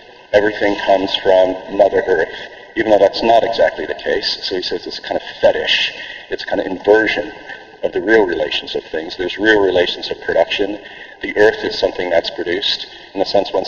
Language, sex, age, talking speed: English, male, 40-59, 200 wpm